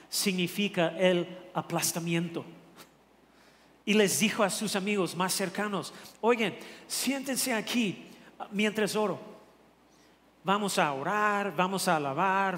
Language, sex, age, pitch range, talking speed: Spanish, male, 40-59, 170-210 Hz, 105 wpm